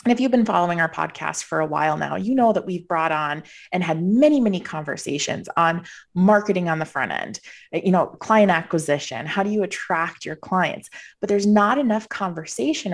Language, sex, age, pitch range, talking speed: English, female, 20-39, 160-210 Hz, 200 wpm